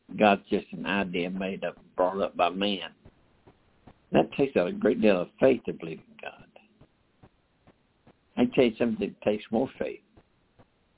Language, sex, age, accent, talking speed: English, male, 60-79, American, 160 wpm